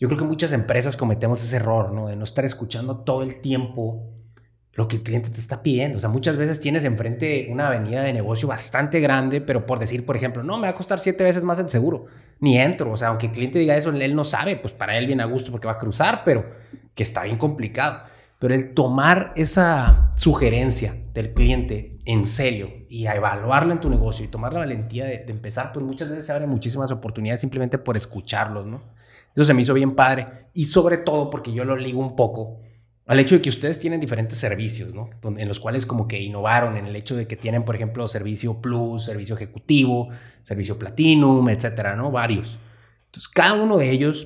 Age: 30-49